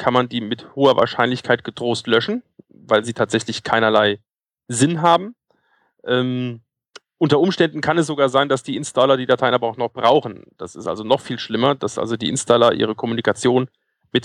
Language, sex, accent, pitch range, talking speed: German, male, German, 110-130 Hz, 180 wpm